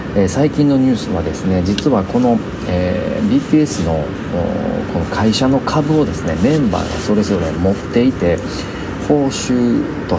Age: 40-59